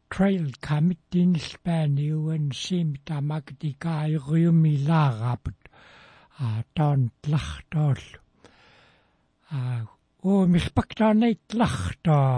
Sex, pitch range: male, 135-170 Hz